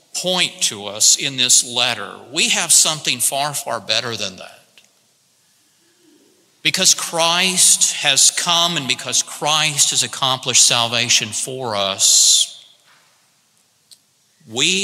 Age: 50-69